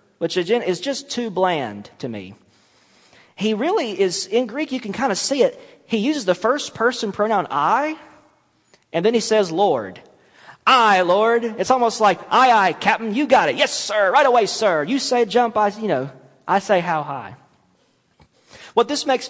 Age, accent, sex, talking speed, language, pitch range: 40-59, American, male, 185 wpm, English, 150-230 Hz